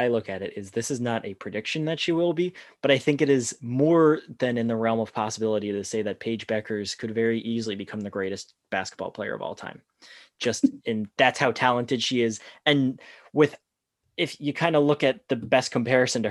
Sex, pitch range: male, 110-135 Hz